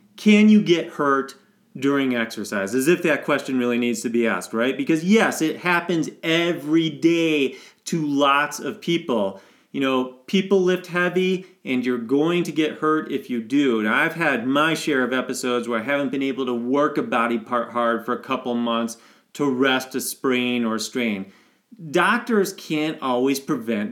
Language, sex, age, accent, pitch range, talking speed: English, male, 30-49, American, 125-170 Hz, 180 wpm